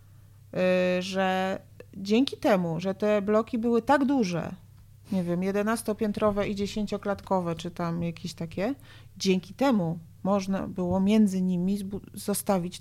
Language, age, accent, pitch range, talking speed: Polish, 40-59, native, 175-215 Hz, 115 wpm